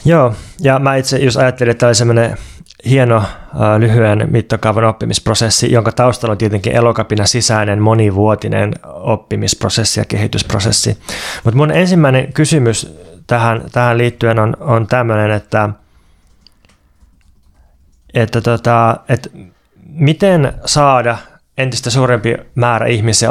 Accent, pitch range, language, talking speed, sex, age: native, 110-125 Hz, Finnish, 115 wpm, male, 20-39